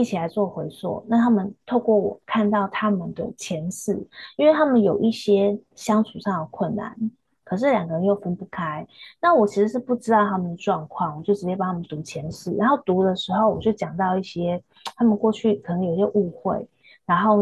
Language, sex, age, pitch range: Chinese, female, 20-39, 180-225 Hz